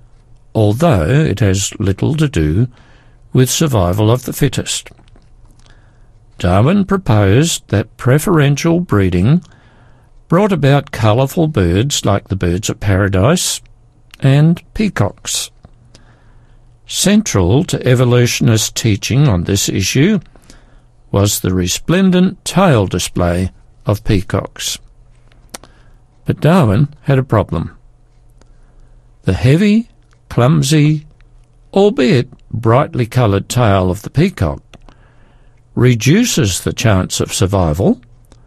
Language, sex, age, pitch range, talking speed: English, male, 60-79, 105-140 Hz, 95 wpm